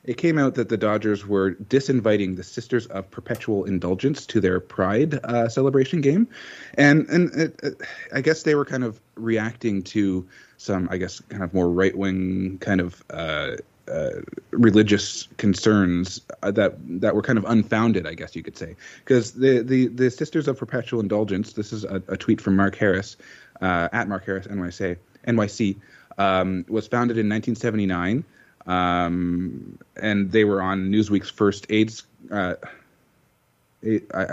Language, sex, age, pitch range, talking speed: English, male, 30-49, 95-120 Hz, 160 wpm